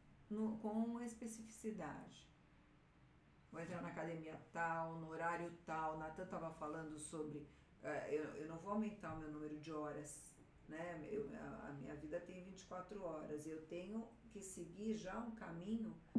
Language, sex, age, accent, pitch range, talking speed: Portuguese, female, 50-69, Brazilian, 160-215 Hz, 155 wpm